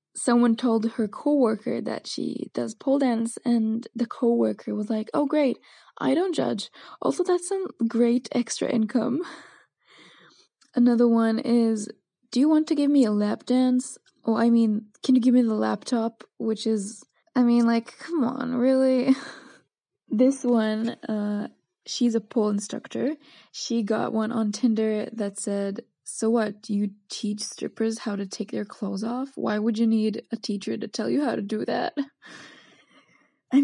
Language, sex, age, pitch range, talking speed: English, female, 10-29, 220-255 Hz, 170 wpm